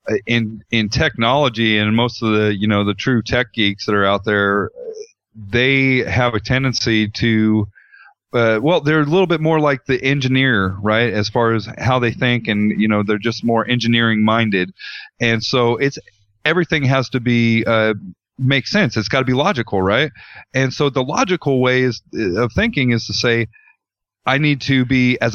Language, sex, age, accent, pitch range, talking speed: English, male, 40-59, American, 105-130 Hz, 185 wpm